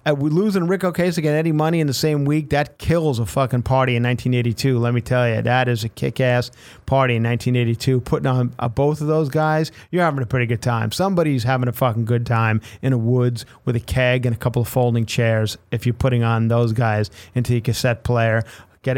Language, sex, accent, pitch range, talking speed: English, male, American, 120-150 Hz, 230 wpm